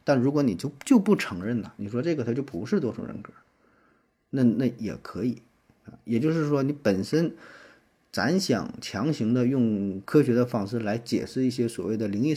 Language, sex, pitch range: Chinese, male, 105-135 Hz